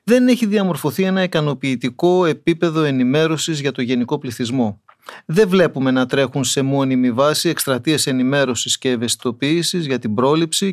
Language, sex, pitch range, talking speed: Greek, male, 130-190 Hz, 140 wpm